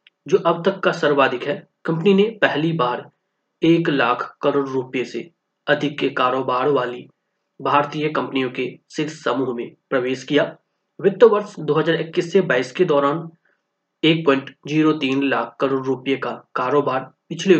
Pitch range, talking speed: 135-170 Hz, 140 wpm